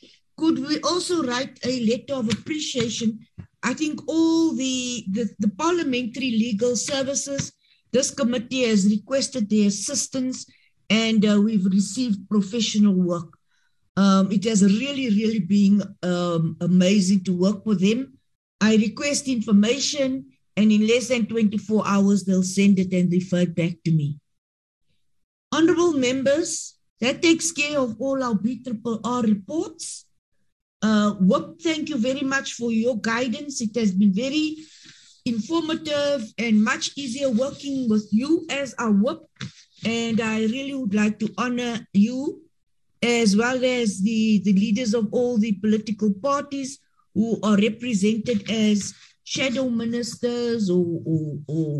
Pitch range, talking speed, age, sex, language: 205-260 Hz, 140 wpm, 60-79, female, English